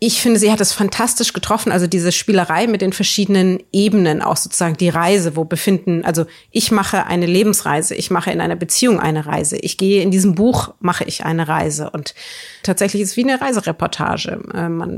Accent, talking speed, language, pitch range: German, 195 wpm, German, 175-205 Hz